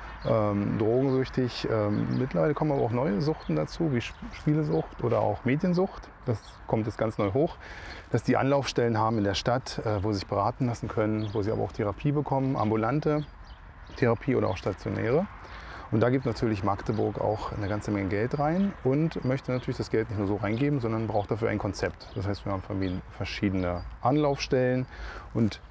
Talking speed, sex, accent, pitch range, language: 185 wpm, male, German, 100-140 Hz, German